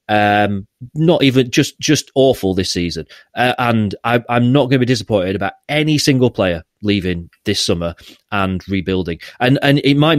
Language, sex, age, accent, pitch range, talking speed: English, male, 30-49, British, 100-125 Hz, 170 wpm